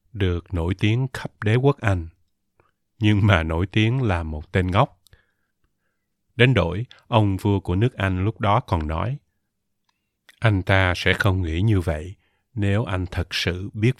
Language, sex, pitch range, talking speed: Vietnamese, male, 90-105 Hz, 165 wpm